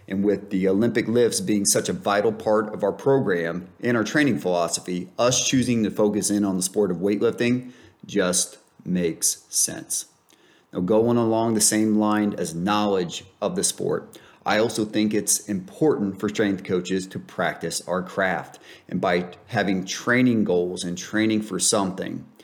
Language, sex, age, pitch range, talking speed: English, male, 30-49, 95-115 Hz, 165 wpm